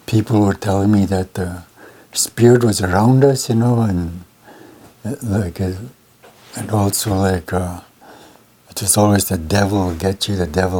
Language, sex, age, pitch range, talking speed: English, male, 60-79, 90-105 Hz, 155 wpm